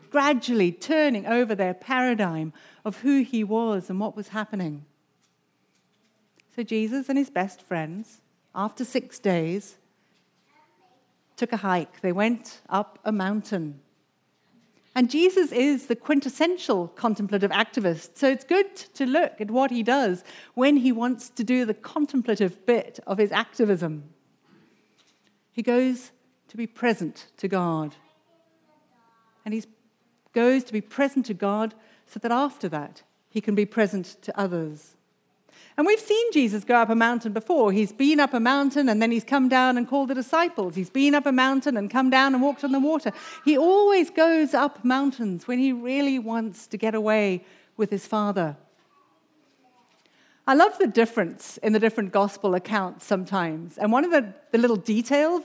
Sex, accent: female, British